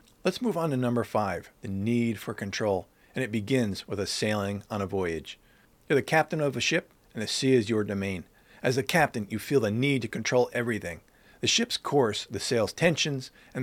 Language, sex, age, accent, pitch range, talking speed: English, male, 50-69, American, 105-135 Hz, 210 wpm